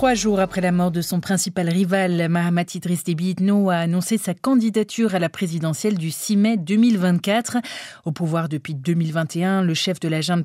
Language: French